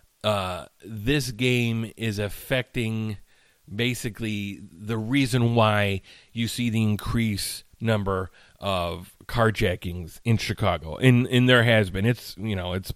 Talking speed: 130 wpm